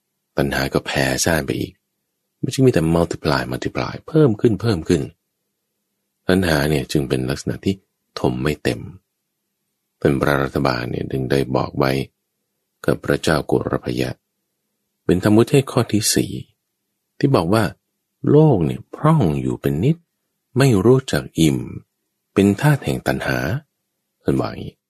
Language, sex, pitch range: English, male, 75-110 Hz